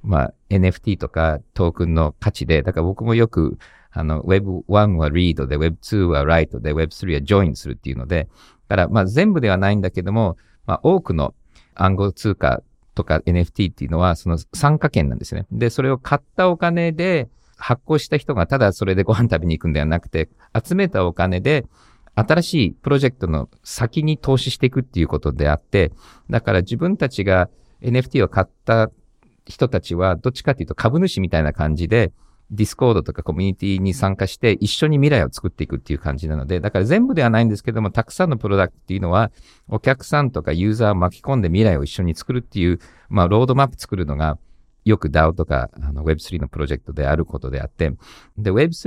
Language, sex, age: Japanese, male, 50-69